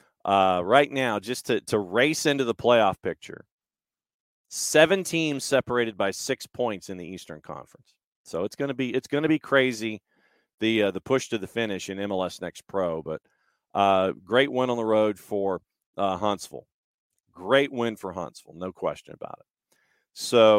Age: 40-59